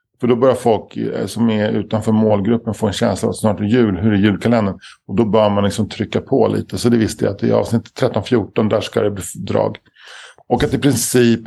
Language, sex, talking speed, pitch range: Swedish, male, 240 wpm, 105-115 Hz